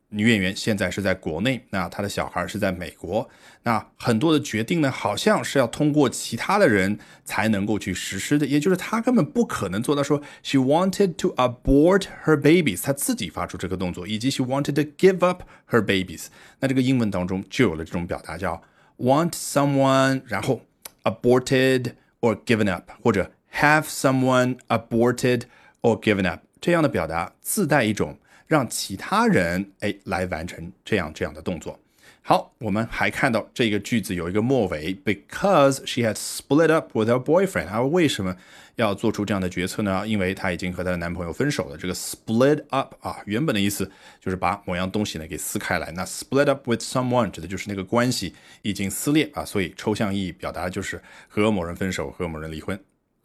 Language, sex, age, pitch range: Chinese, male, 30-49, 95-140 Hz